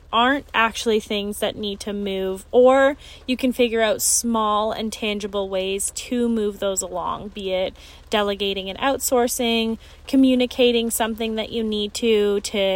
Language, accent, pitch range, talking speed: English, American, 195-235 Hz, 150 wpm